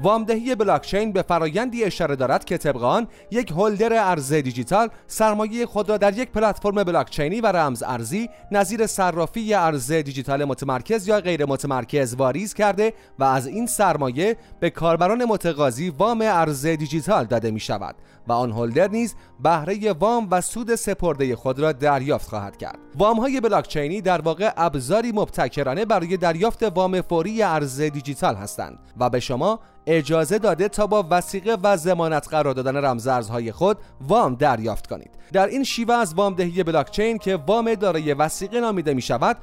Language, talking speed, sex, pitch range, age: Persian, 160 wpm, male, 145-215 Hz, 30-49